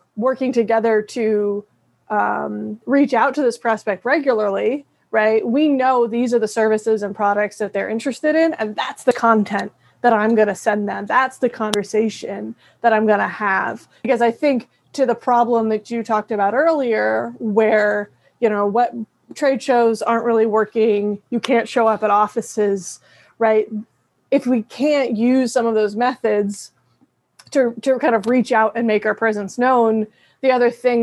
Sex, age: female, 20-39